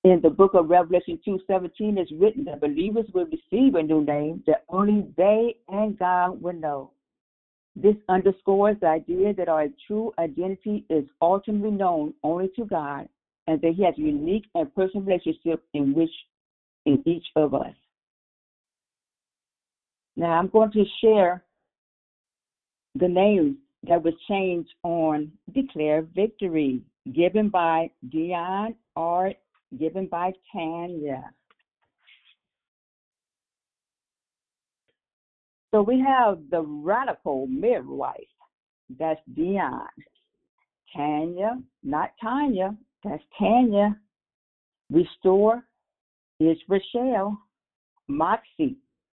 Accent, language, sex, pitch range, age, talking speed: American, English, female, 160-215 Hz, 60-79, 105 wpm